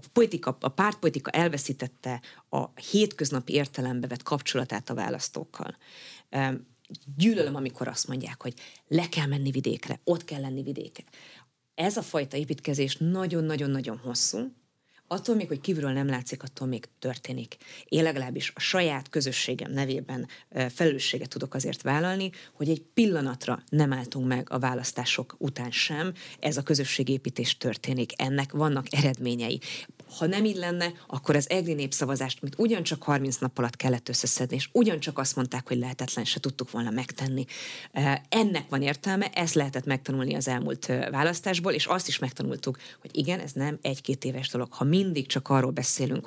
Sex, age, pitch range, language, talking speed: female, 30-49, 130-160 Hz, Hungarian, 150 wpm